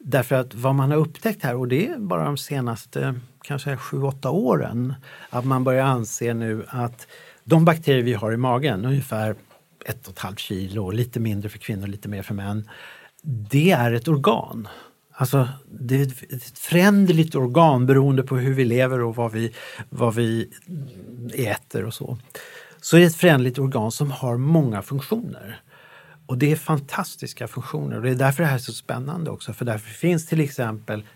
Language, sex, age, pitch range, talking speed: English, male, 60-79, 115-145 Hz, 185 wpm